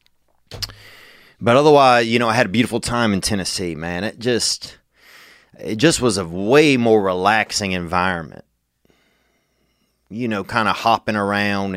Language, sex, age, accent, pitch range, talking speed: English, male, 30-49, American, 85-120 Hz, 145 wpm